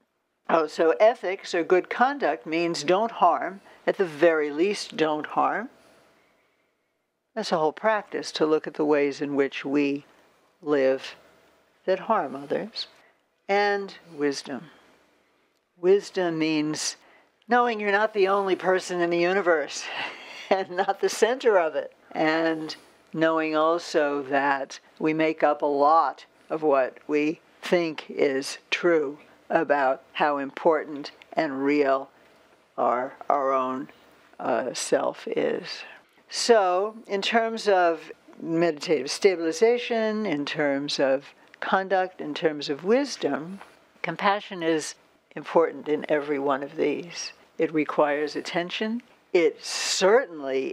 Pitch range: 150-200 Hz